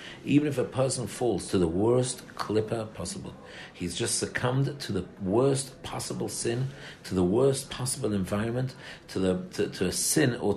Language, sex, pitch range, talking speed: English, male, 105-135 Hz, 170 wpm